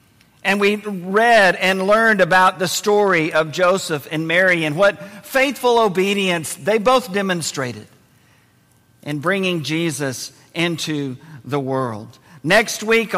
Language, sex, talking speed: English, male, 125 wpm